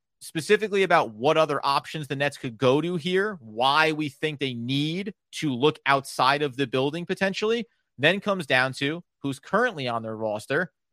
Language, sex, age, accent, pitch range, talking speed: English, male, 30-49, American, 125-185 Hz, 175 wpm